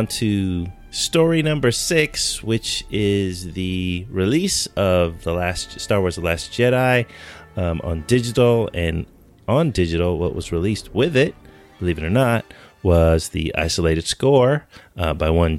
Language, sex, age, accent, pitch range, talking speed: English, male, 30-49, American, 85-110 Hz, 145 wpm